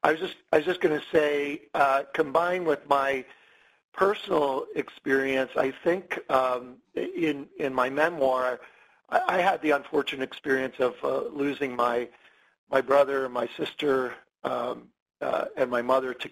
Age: 50-69